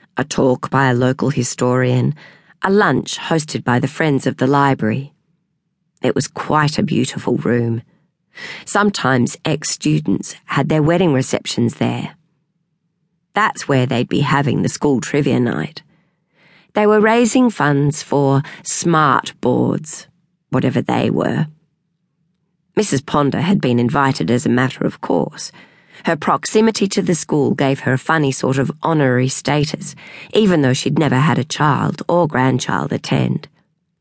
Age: 40-59